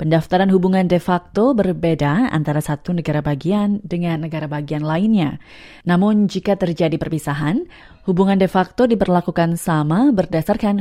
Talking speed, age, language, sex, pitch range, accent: 130 wpm, 20-39, Indonesian, female, 160-200 Hz, native